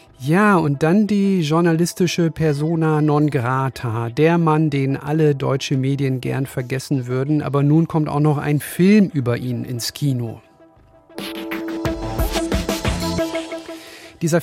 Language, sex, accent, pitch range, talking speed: German, male, German, 130-155 Hz, 120 wpm